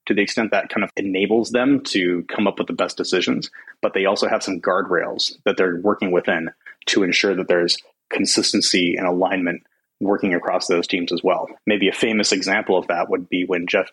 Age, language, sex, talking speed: 30-49, English, male, 205 wpm